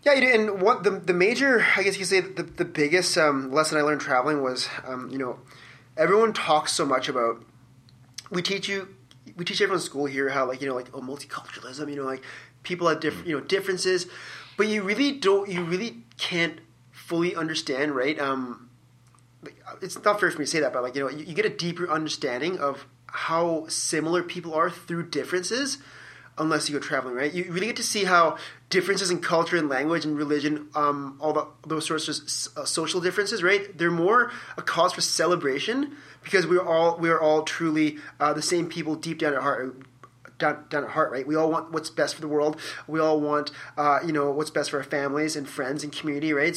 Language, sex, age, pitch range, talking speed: English, male, 30-49, 140-175 Hz, 215 wpm